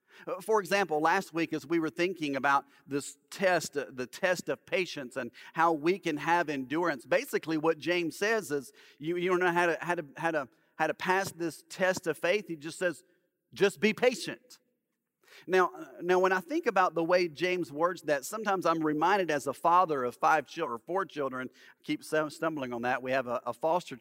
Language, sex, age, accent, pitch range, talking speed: English, male, 40-59, American, 160-220 Hz, 205 wpm